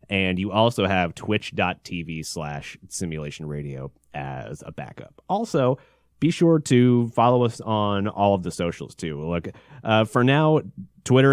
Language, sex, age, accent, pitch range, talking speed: English, male, 30-49, American, 90-115 Hz, 145 wpm